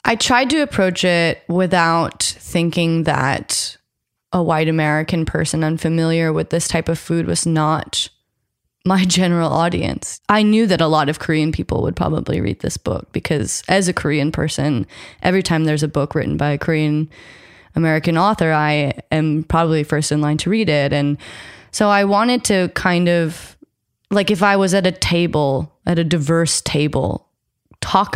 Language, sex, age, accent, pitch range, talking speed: English, female, 20-39, American, 150-170 Hz, 170 wpm